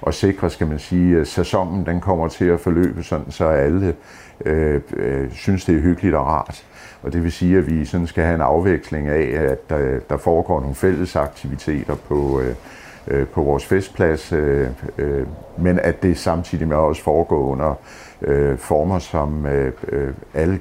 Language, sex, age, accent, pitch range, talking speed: Danish, male, 60-79, native, 70-90 Hz, 175 wpm